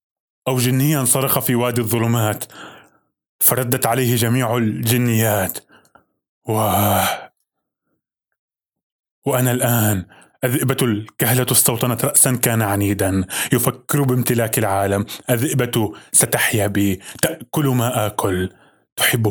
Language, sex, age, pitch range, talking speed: Arabic, male, 20-39, 100-125 Hz, 85 wpm